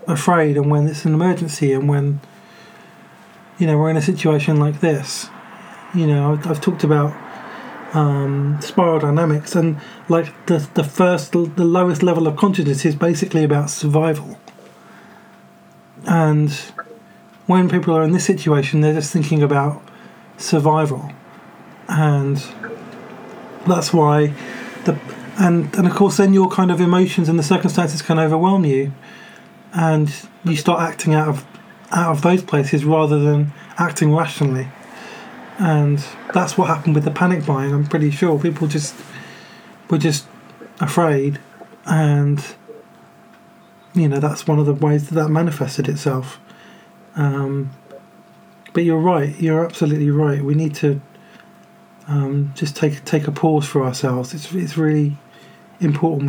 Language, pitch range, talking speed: English, 150-180 Hz, 145 wpm